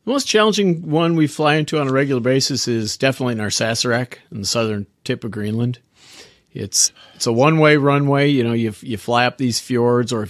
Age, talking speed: 50-69, 220 wpm